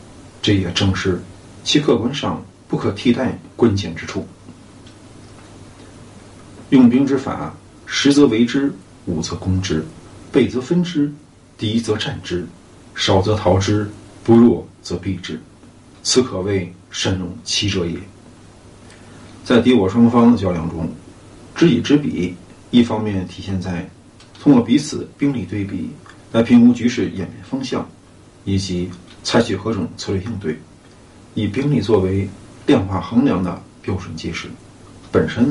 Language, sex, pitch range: Chinese, male, 90-115 Hz